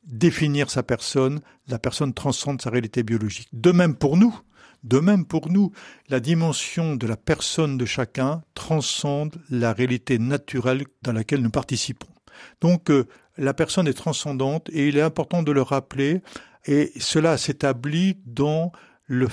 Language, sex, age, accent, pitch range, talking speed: French, male, 60-79, French, 125-170 Hz, 155 wpm